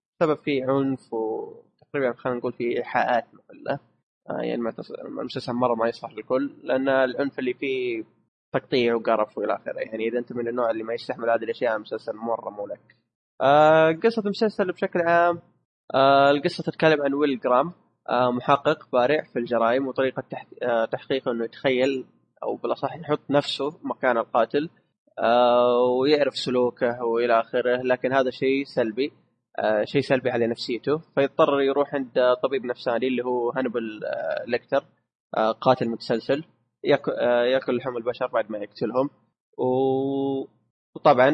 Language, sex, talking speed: Arabic, male, 140 wpm